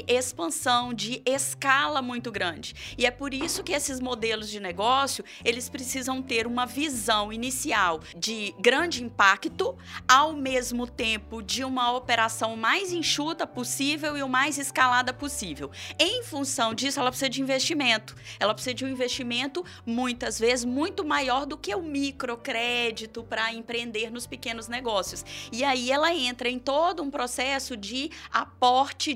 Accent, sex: Brazilian, female